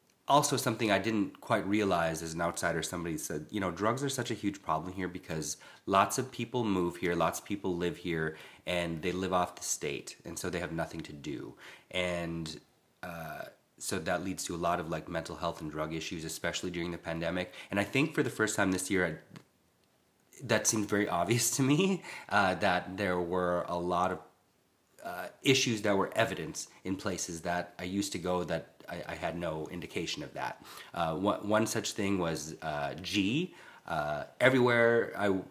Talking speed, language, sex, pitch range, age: 195 wpm, English, male, 85-110 Hz, 30-49